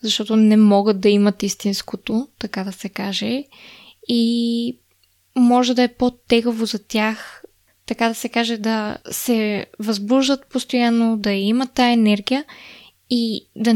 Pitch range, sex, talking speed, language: 210-245 Hz, female, 135 wpm, Bulgarian